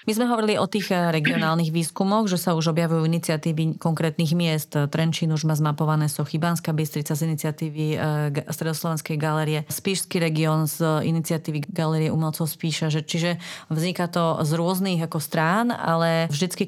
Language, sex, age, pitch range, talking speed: Slovak, female, 30-49, 155-170 Hz, 145 wpm